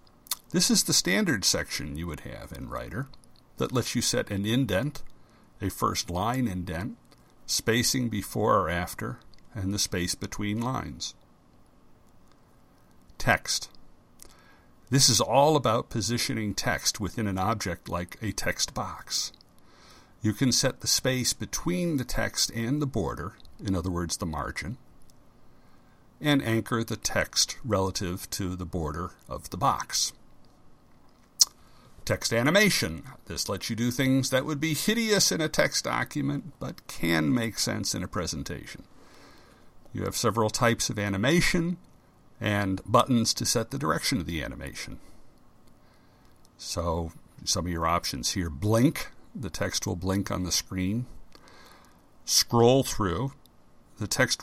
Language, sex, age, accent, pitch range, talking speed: English, male, 60-79, American, 90-125 Hz, 135 wpm